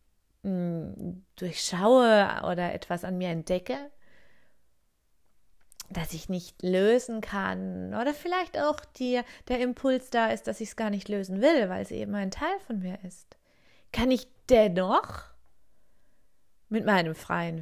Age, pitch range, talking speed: 30-49, 180-240 Hz, 135 wpm